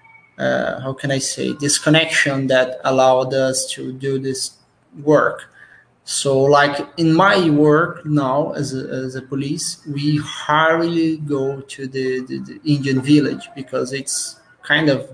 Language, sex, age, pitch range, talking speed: Portuguese, male, 20-39, 130-155 Hz, 145 wpm